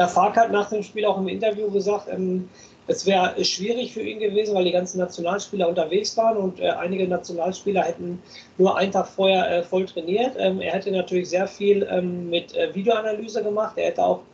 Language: German